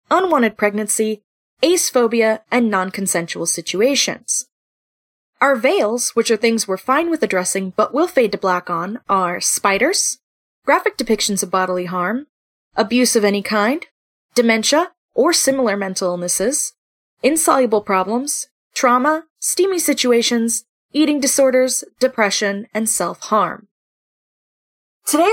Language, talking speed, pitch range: English, 115 wpm, 200-290 Hz